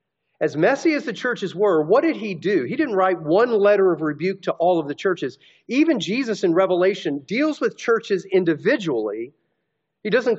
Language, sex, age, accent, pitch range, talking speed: English, male, 40-59, American, 150-205 Hz, 185 wpm